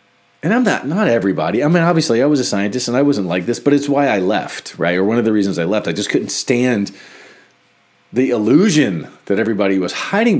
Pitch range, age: 120-190 Hz, 40-59